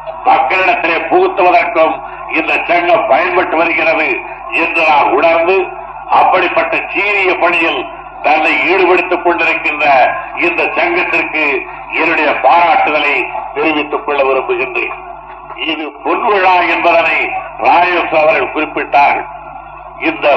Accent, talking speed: native, 85 wpm